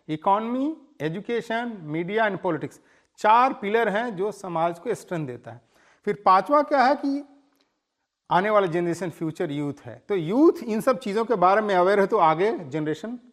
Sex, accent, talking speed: male, Indian, 155 wpm